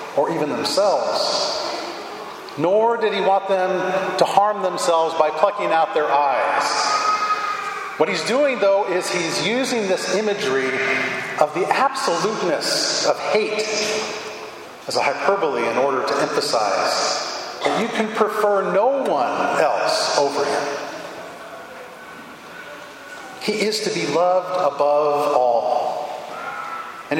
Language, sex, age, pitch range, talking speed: English, male, 40-59, 165-215 Hz, 120 wpm